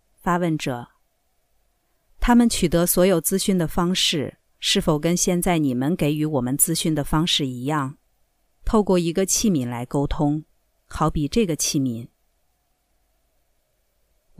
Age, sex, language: 50-69, female, Chinese